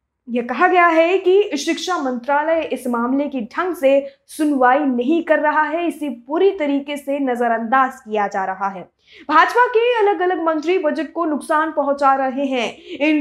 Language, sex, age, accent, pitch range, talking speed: Hindi, female, 20-39, native, 265-325 Hz, 175 wpm